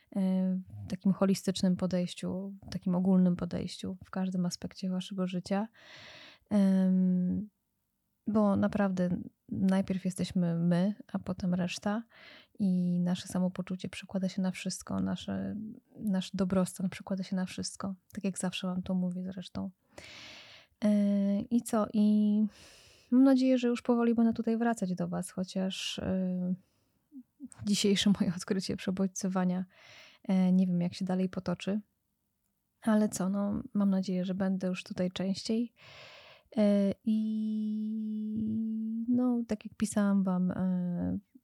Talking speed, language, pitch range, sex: 115 wpm, Polish, 185-210 Hz, female